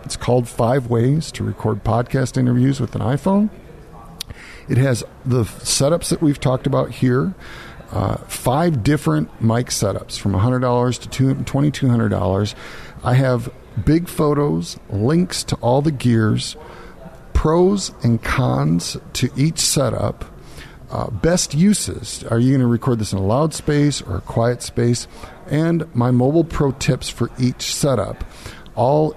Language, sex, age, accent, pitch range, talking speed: English, male, 50-69, American, 115-145 Hz, 145 wpm